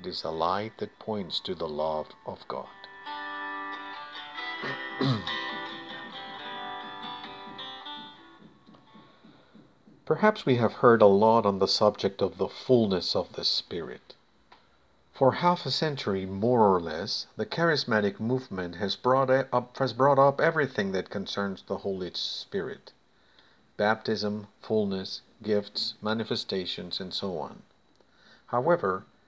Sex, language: male, Spanish